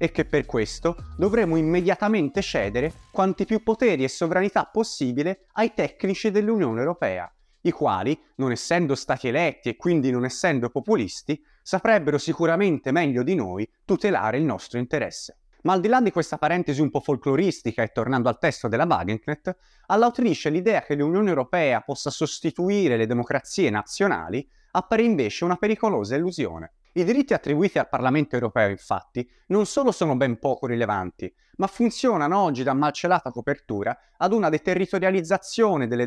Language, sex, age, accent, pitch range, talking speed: Italian, male, 30-49, native, 135-195 Hz, 150 wpm